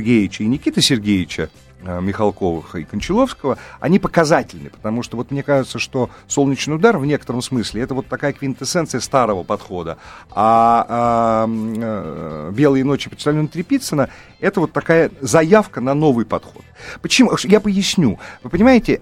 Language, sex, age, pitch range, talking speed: Russian, male, 40-59, 120-175 Hz, 135 wpm